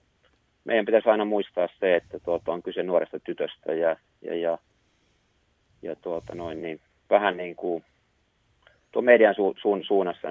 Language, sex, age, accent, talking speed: Finnish, male, 30-49, native, 150 wpm